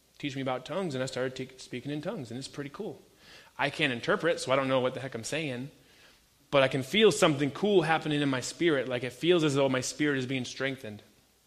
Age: 30-49